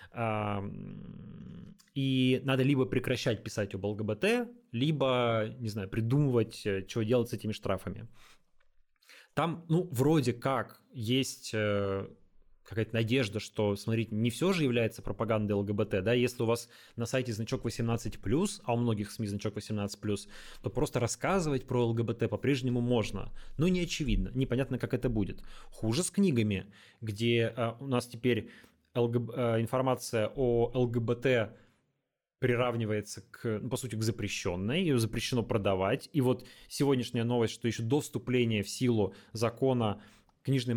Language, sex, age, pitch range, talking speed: Russian, male, 20-39, 110-130 Hz, 135 wpm